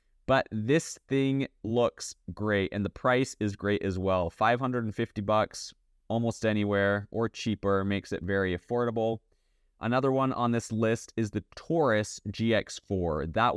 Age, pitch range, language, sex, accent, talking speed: 20-39, 100-120 Hz, English, male, American, 140 wpm